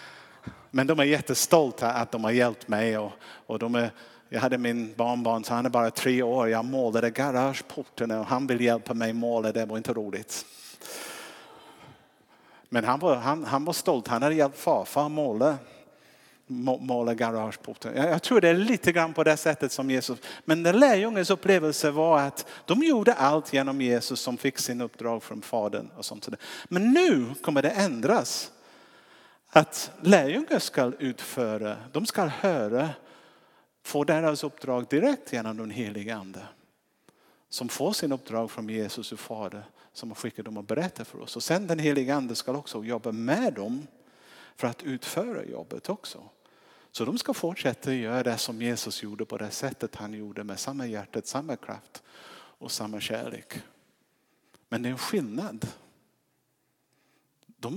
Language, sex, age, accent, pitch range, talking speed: Swedish, male, 50-69, Norwegian, 115-150 Hz, 165 wpm